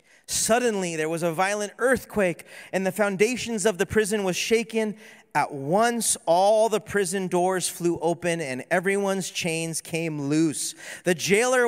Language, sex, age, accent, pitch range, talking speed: English, male, 30-49, American, 165-215 Hz, 150 wpm